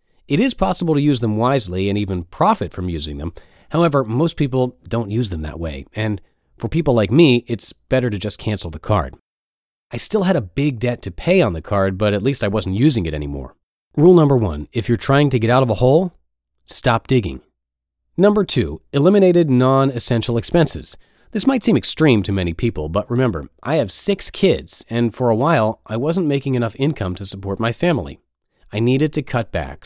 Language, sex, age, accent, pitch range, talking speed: English, male, 30-49, American, 95-140 Hz, 205 wpm